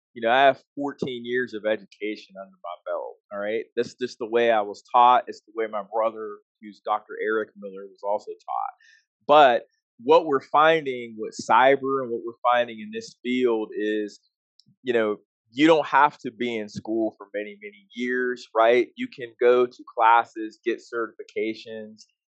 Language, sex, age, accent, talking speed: English, male, 20-39, American, 180 wpm